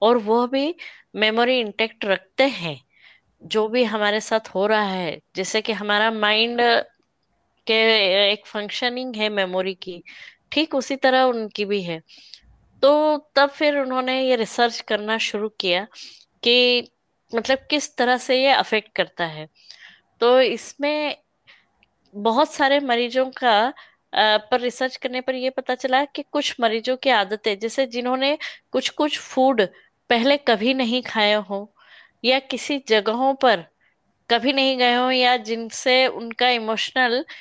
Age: 20-39